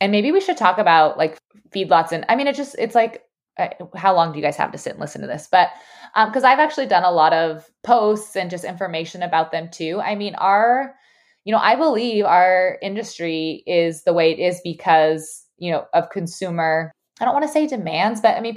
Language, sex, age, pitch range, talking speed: English, female, 20-39, 165-225 Hz, 230 wpm